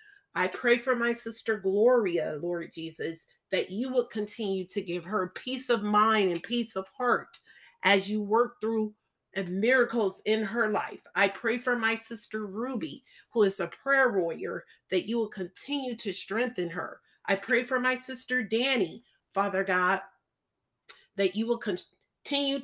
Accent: American